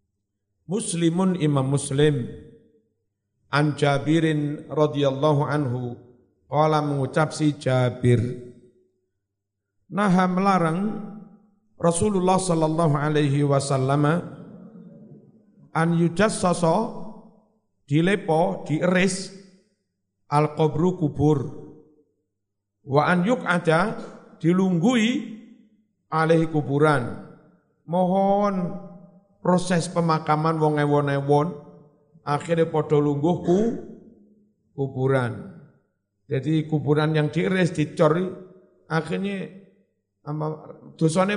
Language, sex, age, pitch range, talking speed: Indonesian, male, 50-69, 145-195 Hz, 70 wpm